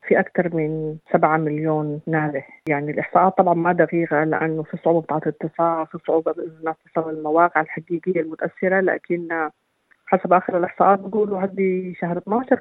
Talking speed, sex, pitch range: 145 wpm, female, 155-180 Hz